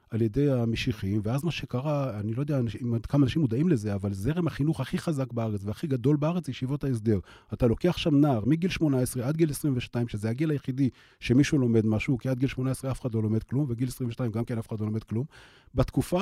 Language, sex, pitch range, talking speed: Hebrew, male, 120-165 Hz, 220 wpm